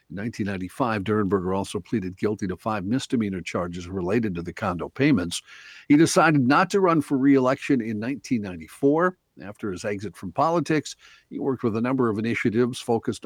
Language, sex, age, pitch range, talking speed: English, male, 50-69, 100-135 Hz, 165 wpm